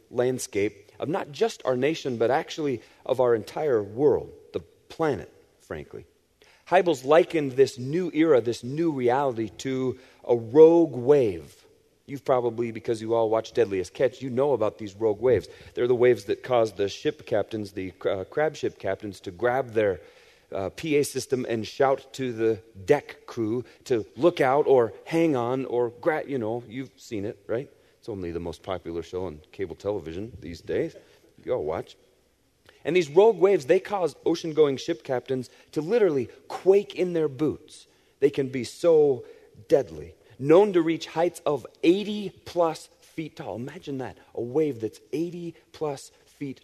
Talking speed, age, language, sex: 165 wpm, 40-59, English, male